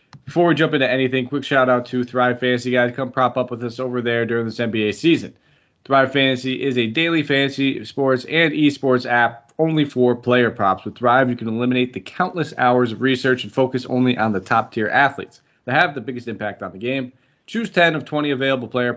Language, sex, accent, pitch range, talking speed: English, male, American, 120-140 Hz, 210 wpm